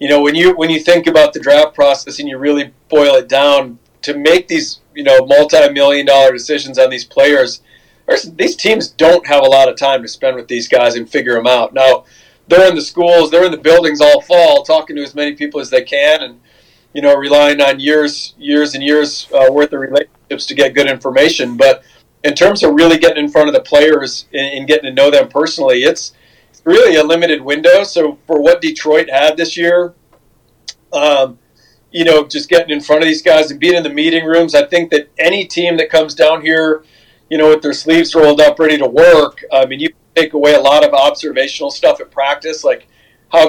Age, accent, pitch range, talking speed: 40-59, American, 145-180 Hz, 220 wpm